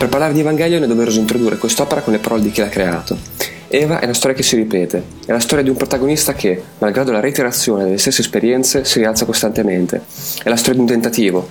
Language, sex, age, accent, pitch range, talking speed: Italian, male, 20-39, native, 105-135 Hz, 230 wpm